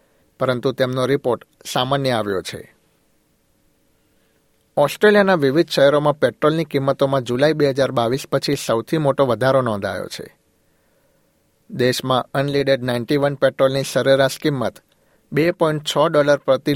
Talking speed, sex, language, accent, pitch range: 110 wpm, male, Gujarati, native, 130-145 Hz